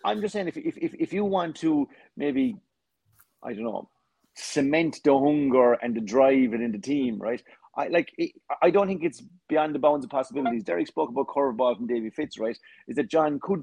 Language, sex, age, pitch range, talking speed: English, male, 30-49, 130-175 Hz, 210 wpm